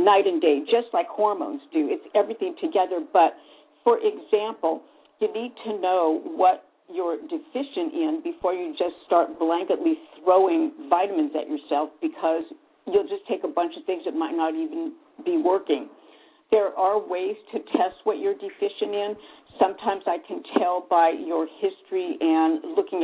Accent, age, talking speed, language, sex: American, 50-69, 160 wpm, English, female